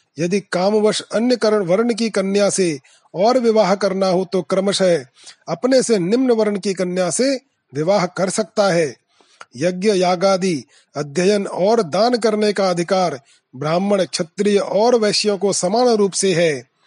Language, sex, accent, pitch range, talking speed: Hindi, male, native, 180-215 Hz, 150 wpm